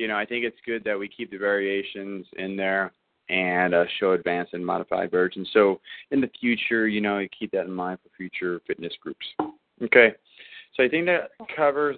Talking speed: 205 wpm